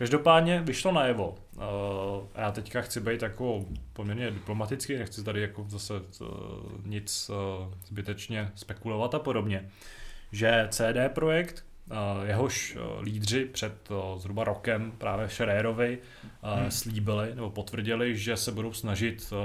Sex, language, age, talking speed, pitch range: male, Czech, 20-39, 115 wpm, 100-115 Hz